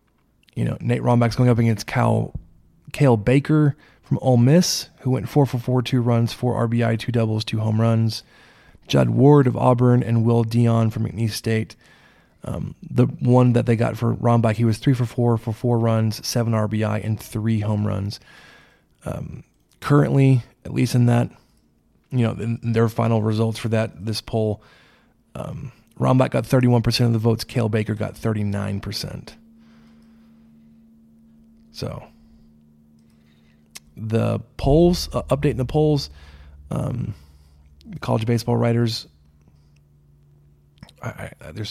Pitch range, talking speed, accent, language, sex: 105-125 Hz, 140 wpm, American, English, male